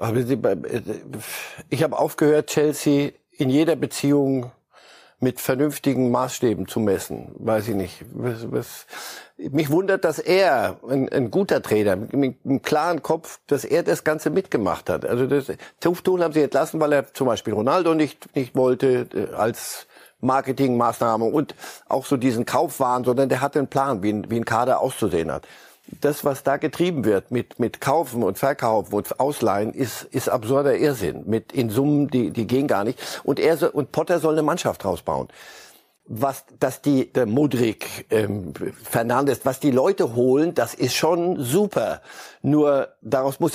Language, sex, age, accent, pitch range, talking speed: German, male, 60-79, German, 120-150 Hz, 165 wpm